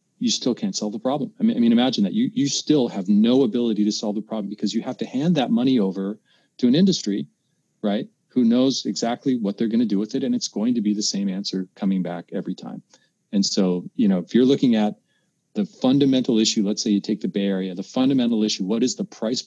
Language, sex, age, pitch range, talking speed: English, male, 40-59, 100-150 Hz, 245 wpm